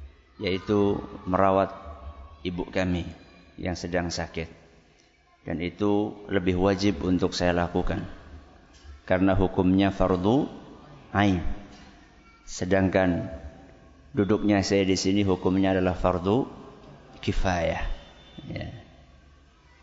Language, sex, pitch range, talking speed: Malay, male, 90-100 Hz, 85 wpm